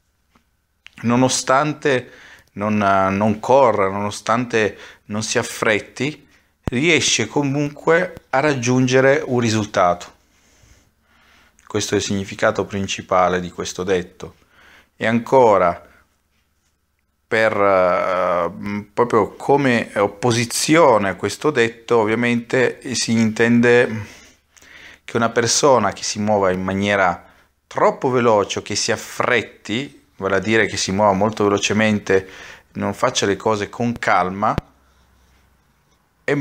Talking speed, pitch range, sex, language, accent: 105 wpm, 95-115 Hz, male, Italian, native